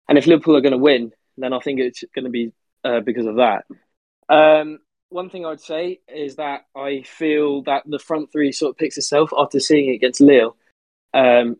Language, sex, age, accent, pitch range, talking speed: English, male, 20-39, British, 125-150 Hz, 210 wpm